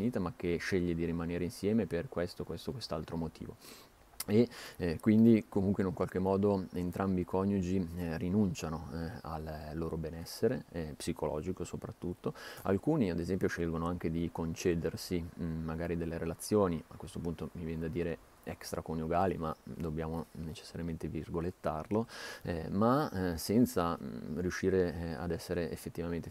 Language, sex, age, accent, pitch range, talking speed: Italian, male, 30-49, native, 80-90 Hz, 145 wpm